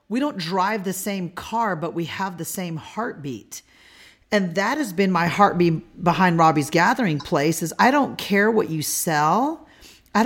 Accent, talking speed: American, 175 wpm